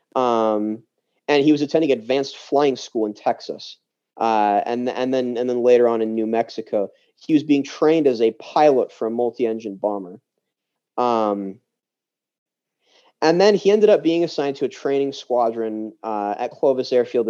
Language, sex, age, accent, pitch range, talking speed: English, male, 30-49, American, 115-140 Hz, 165 wpm